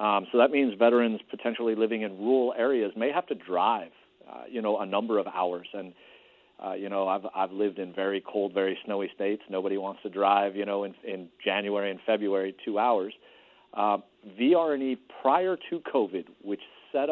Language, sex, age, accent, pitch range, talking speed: English, male, 40-59, American, 100-120 Hz, 190 wpm